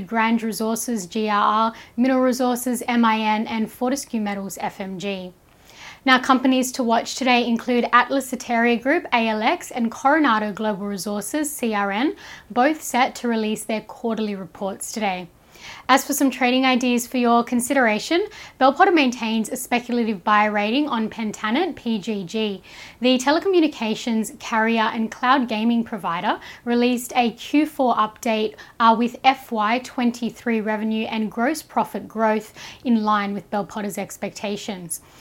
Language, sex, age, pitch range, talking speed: English, female, 10-29, 215-255 Hz, 125 wpm